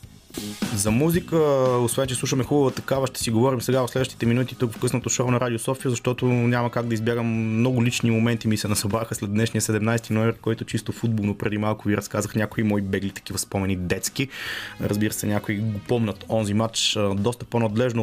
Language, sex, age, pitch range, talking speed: Bulgarian, male, 20-39, 110-125 Hz, 195 wpm